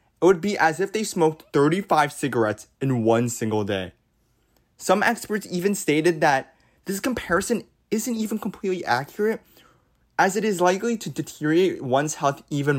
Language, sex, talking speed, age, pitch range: English, male, 155 wpm, 20-39, 115-175 Hz